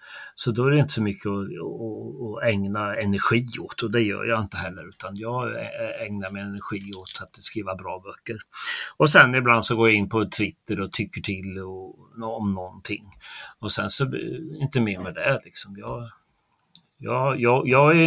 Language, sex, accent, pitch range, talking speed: Swedish, male, native, 105-150 Hz, 195 wpm